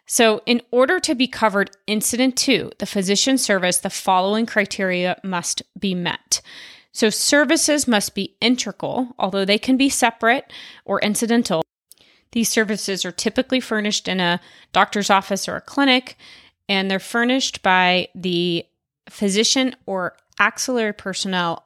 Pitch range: 185-235 Hz